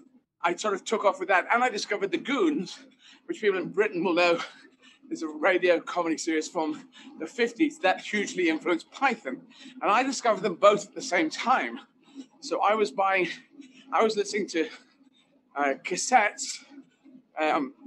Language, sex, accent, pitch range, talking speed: English, male, British, 200-280 Hz, 170 wpm